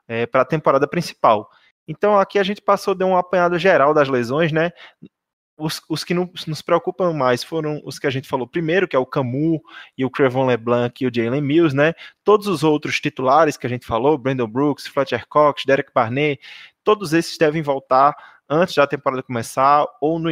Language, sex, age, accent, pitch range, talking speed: Portuguese, male, 20-39, Brazilian, 130-170 Hz, 200 wpm